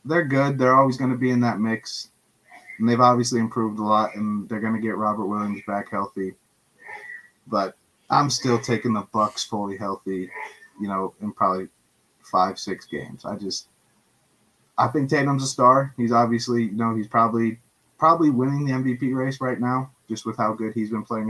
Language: English